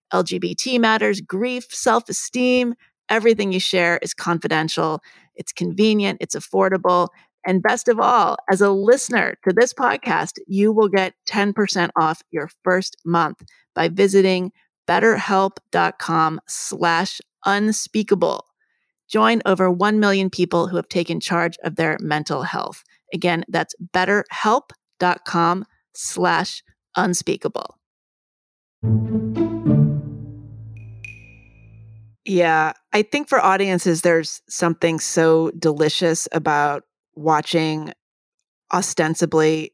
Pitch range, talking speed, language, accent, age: 160-195 Hz, 100 wpm, English, American, 30-49